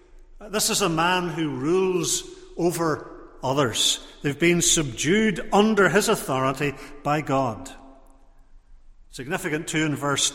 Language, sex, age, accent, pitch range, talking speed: English, male, 50-69, British, 145-190 Hz, 115 wpm